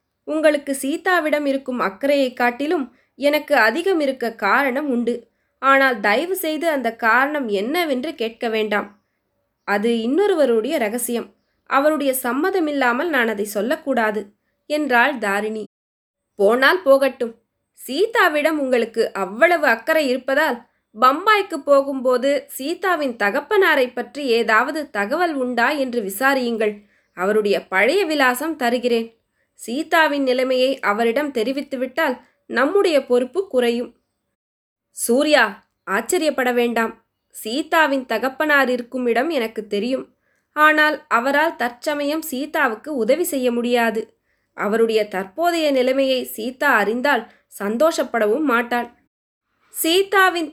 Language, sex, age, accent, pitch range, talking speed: Tamil, female, 20-39, native, 235-300 Hz, 95 wpm